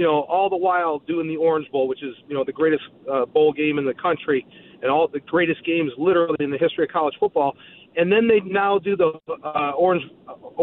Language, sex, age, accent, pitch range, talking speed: English, male, 40-59, American, 160-225 Hz, 230 wpm